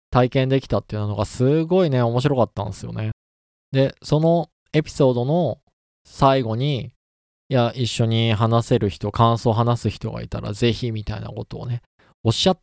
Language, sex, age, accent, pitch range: Japanese, male, 20-39, native, 105-135 Hz